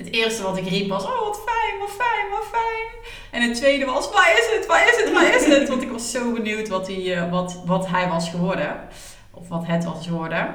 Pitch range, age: 170-195 Hz, 30-49